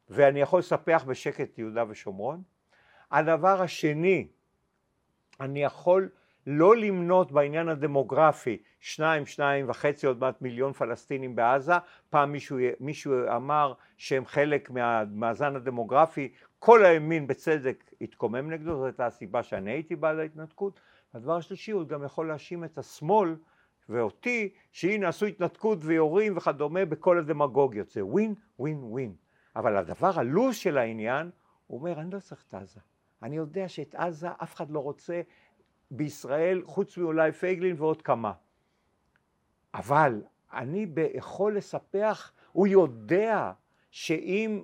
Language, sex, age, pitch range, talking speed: Hebrew, male, 50-69, 140-190 Hz, 130 wpm